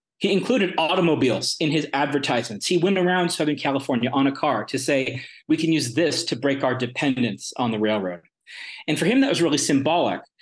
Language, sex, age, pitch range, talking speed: English, male, 30-49, 130-160 Hz, 195 wpm